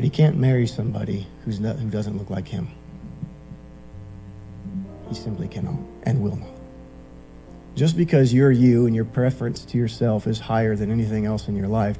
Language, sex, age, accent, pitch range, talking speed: English, male, 40-59, American, 90-120 Hz, 160 wpm